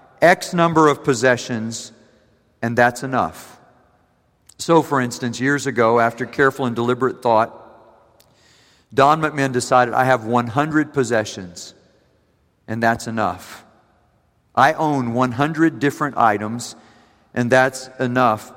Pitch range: 120-165 Hz